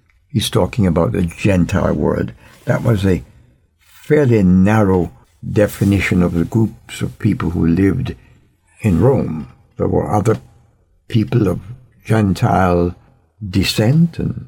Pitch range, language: 90-125 Hz, English